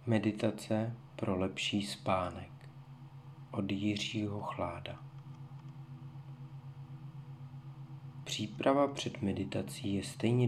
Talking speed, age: 70 wpm, 40-59